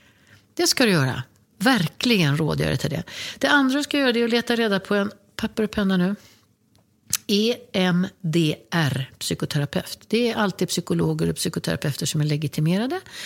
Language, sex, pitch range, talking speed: English, female, 155-210 Hz, 155 wpm